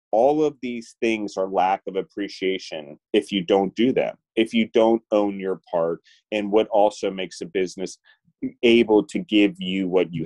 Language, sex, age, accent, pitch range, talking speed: English, male, 30-49, American, 95-115 Hz, 180 wpm